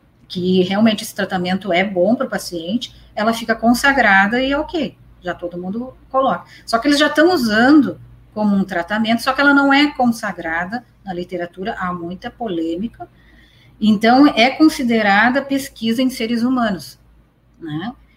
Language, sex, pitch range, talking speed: Portuguese, female, 185-245 Hz, 155 wpm